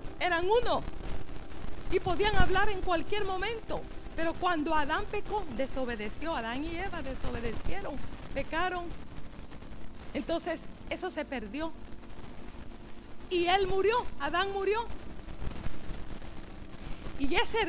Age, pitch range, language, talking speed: 50-69, 260-370 Hz, Spanish, 100 wpm